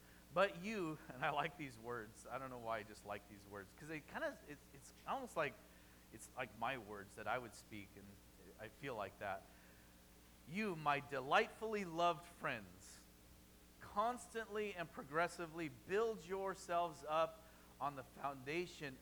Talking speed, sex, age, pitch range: 160 wpm, male, 40-59, 105-175 Hz